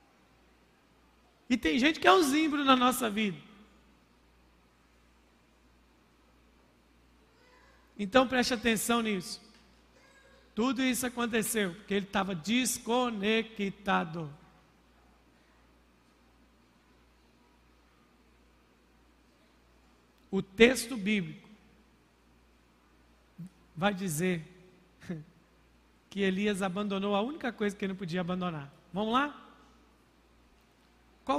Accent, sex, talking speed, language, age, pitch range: Brazilian, male, 75 wpm, Portuguese, 50-69, 165-225 Hz